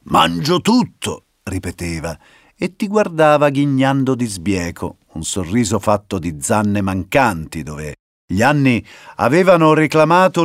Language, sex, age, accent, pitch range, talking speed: Italian, male, 50-69, native, 90-140 Hz, 115 wpm